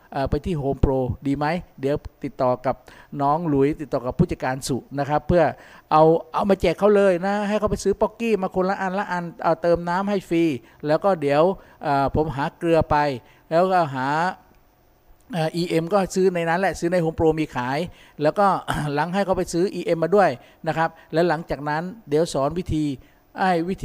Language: Thai